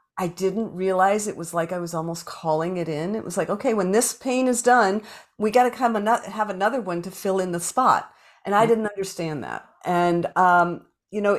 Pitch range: 175-230 Hz